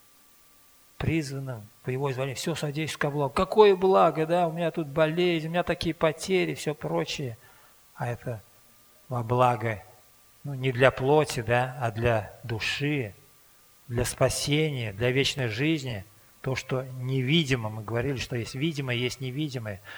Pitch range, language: 115-140 Hz, Russian